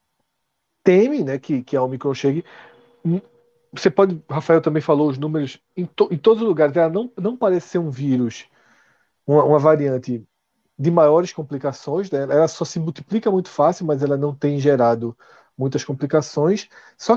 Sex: male